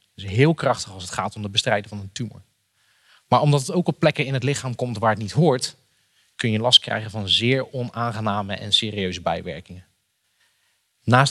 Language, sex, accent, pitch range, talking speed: Dutch, male, Dutch, 105-145 Hz, 195 wpm